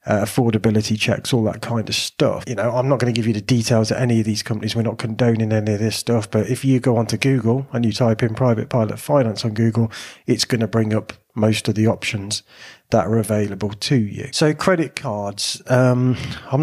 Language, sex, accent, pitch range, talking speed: English, male, British, 110-130 Hz, 230 wpm